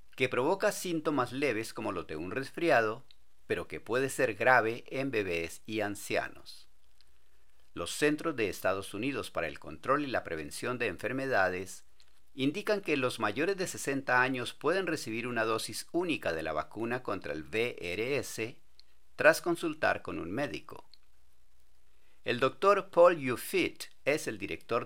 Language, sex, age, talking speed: Spanish, male, 50-69, 145 wpm